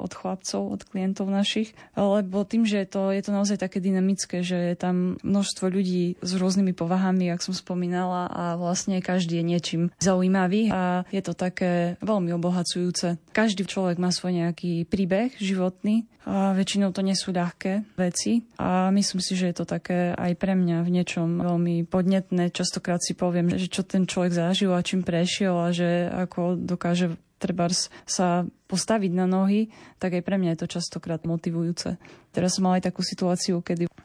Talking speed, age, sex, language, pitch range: 175 wpm, 20-39, female, Slovak, 175-195 Hz